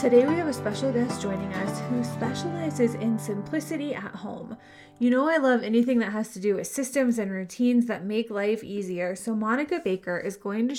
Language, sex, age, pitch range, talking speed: English, female, 20-39, 205-255 Hz, 205 wpm